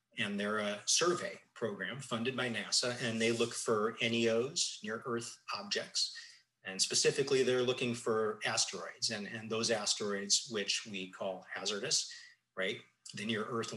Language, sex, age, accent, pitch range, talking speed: English, male, 30-49, American, 110-135 Hz, 140 wpm